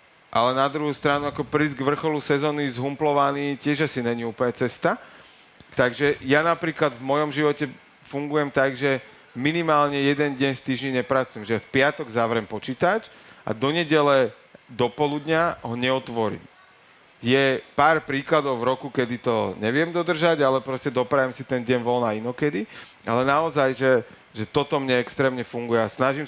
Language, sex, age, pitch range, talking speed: Slovak, male, 40-59, 120-145 Hz, 160 wpm